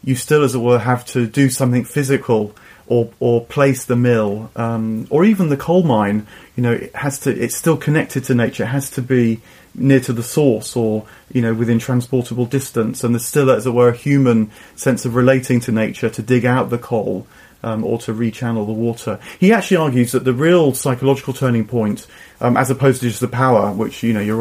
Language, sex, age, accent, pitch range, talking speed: English, male, 30-49, British, 115-135 Hz, 220 wpm